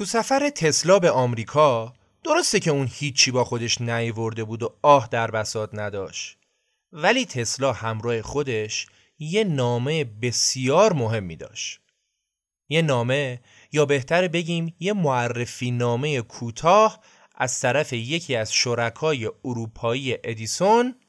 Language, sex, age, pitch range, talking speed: Persian, male, 30-49, 115-175 Hz, 125 wpm